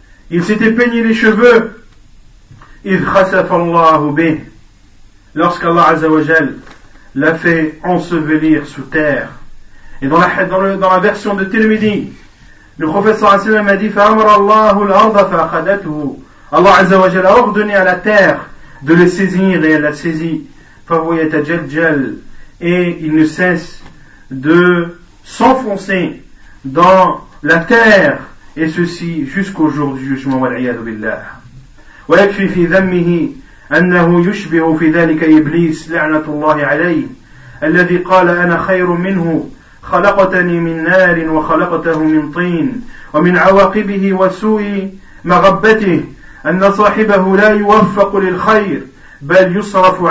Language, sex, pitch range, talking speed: French, male, 155-195 Hz, 115 wpm